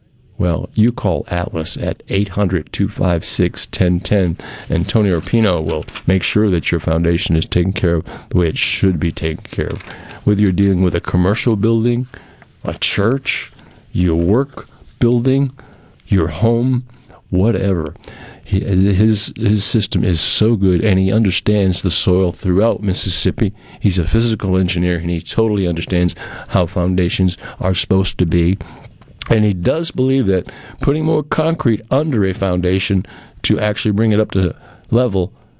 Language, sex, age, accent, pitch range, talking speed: English, male, 50-69, American, 90-110 Hz, 150 wpm